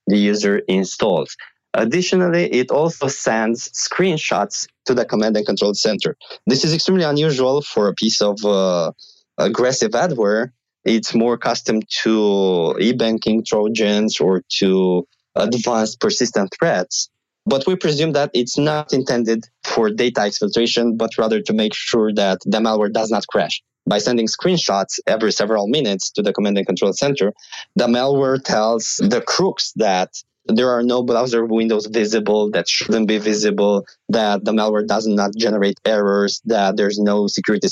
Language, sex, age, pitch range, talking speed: English, male, 20-39, 100-120 Hz, 155 wpm